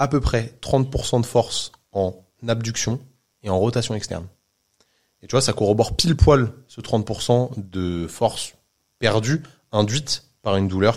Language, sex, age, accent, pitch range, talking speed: French, male, 20-39, French, 95-125 Hz, 155 wpm